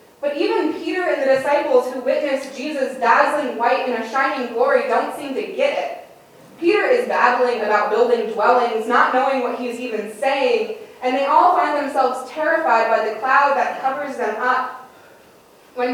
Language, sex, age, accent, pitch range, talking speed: English, female, 20-39, American, 240-300 Hz, 175 wpm